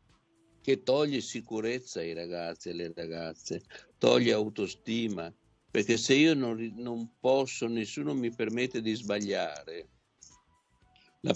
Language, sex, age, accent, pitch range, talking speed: Italian, male, 60-79, native, 100-130 Hz, 115 wpm